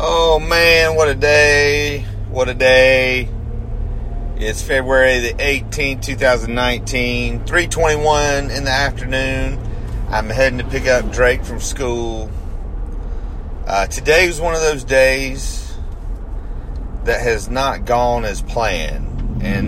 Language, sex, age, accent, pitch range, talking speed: English, male, 30-49, American, 90-125 Hz, 115 wpm